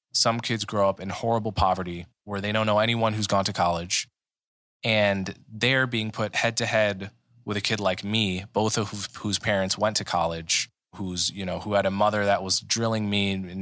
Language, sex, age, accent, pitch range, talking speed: English, male, 20-39, American, 95-115 Hz, 205 wpm